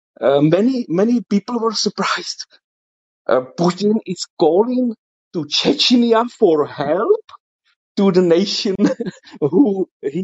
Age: 50-69